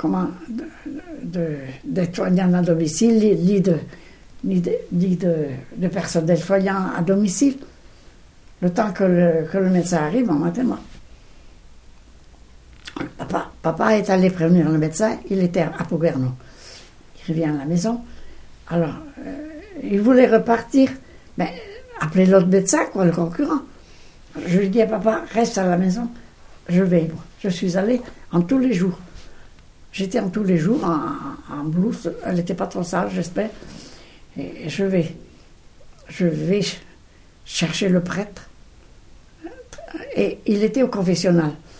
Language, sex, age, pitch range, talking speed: French, female, 60-79, 170-220 Hz, 145 wpm